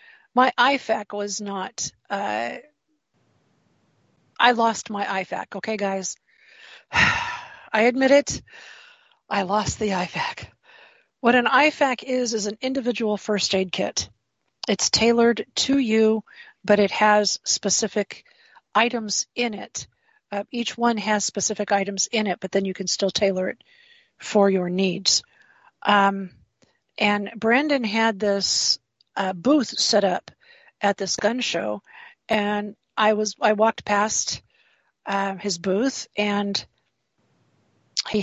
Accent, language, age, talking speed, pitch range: American, English, 40-59, 125 wpm, 200-235 Hz